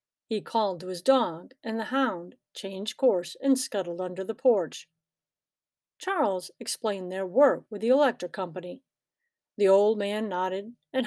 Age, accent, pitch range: 50-69, American, 185-270 Hz